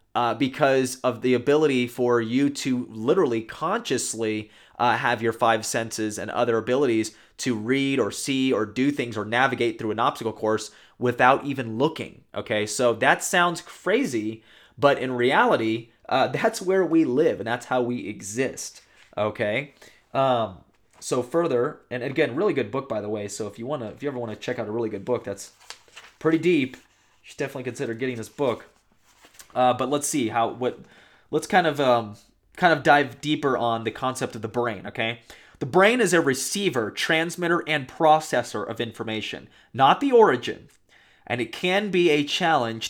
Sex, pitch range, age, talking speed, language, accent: male, 115-140 Hz, 30-49, 180 wpm, English, American